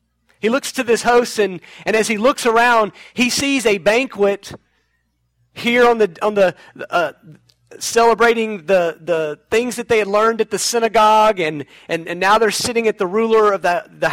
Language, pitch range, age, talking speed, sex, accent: English, 185-230 Hz, 40-59, 185 wpm, male, American